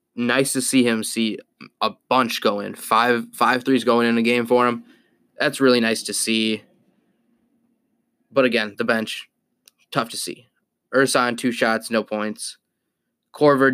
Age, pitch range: 10-29, 110-130 Hz